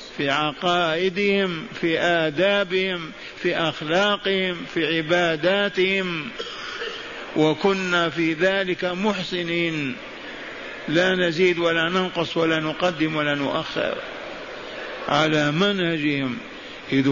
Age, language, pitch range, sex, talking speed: 50-69, Arabic, 155-185 Hz, male, 80 wpm